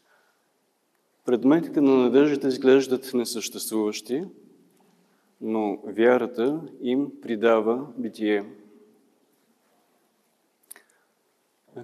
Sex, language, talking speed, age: male, Bulgarian, 55 wpm, 40-59